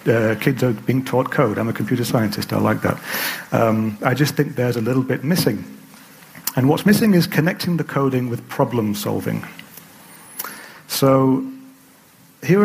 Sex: male